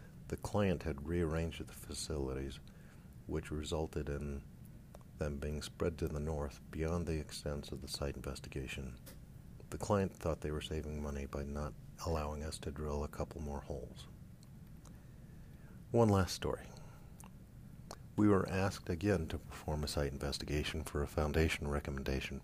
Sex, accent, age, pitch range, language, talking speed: male, American, 50-69, 70-85 Hz, English, 145 wpm